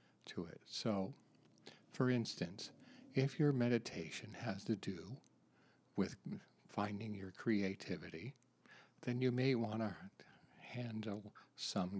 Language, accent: English, American